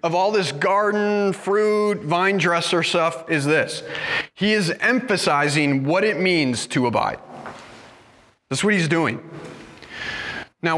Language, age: English, 30-49